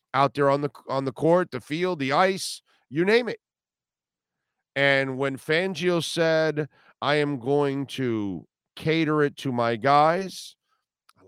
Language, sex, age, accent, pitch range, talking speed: English, male, 40-59, American, 130-160 Hz, 150 wpm